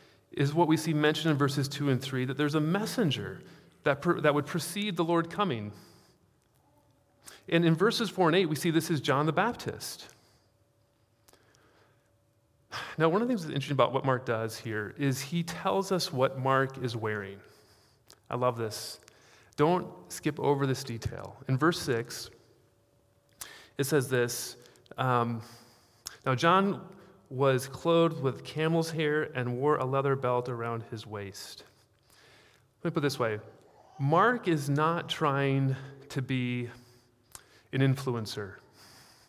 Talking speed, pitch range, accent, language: 150 wpm, 120-160 Hz, American, English